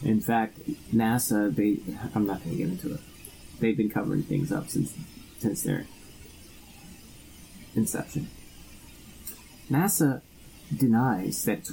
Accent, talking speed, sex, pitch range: American, 125 wpm, male, 105-135 Hz